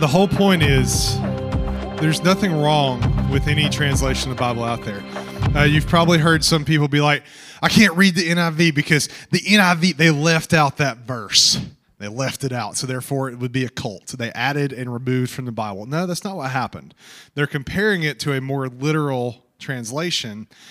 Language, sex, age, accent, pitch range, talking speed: English, male, 30-49, American, 130-165 Hz, 195 wpm